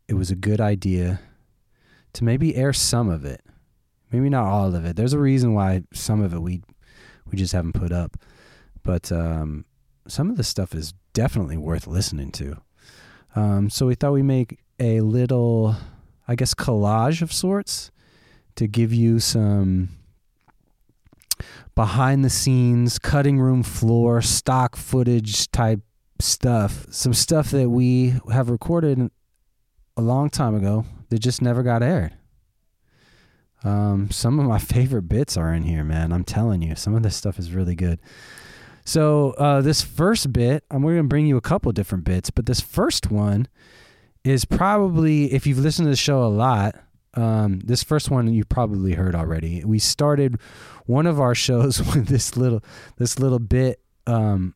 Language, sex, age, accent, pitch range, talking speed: English, male, 30-49, American, 100-130 Hz, 165 wpm